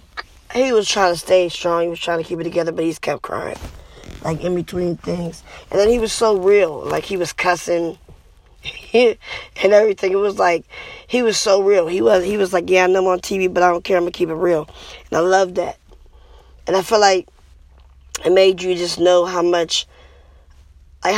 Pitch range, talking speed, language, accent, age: 165-195 Hz, 220 wpm, English, American, 10-29